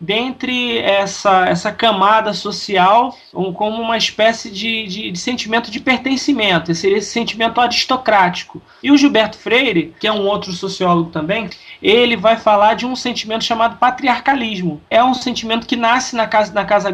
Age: 20-39